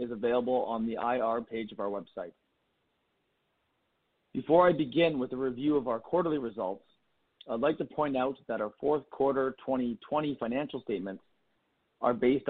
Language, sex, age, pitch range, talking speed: English, male, 40-59, 120-145 Hz, 160 wpm